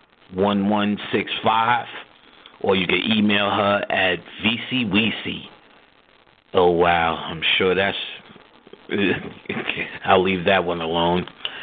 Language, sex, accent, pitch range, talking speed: English, male, American, 90-110 Hz, 115 wpm